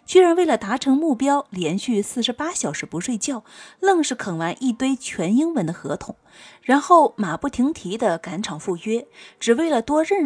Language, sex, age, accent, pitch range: Chinese, female, 30-49, native, 195-290 Hz